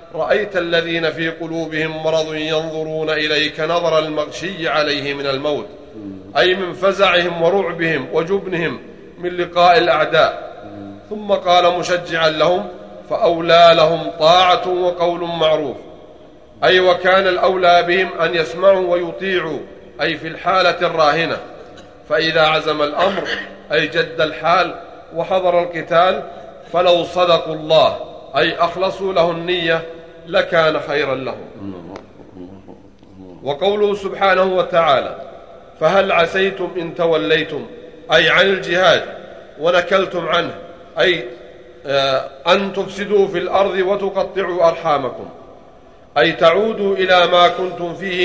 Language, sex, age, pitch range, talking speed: Arabic, male, 40-59, 160-180 Hz, 105 wpm